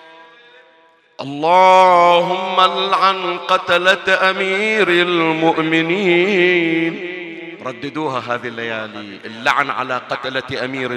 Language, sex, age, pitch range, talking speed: Arabic, male, 40-59, 165-220 Hz, 65 wpm